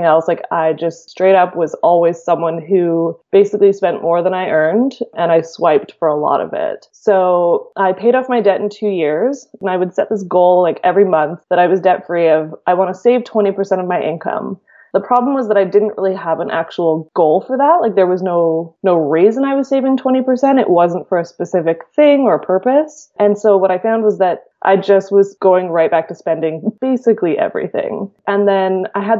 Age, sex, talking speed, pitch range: 20-39, female, 220 wpm, 175-220 Hz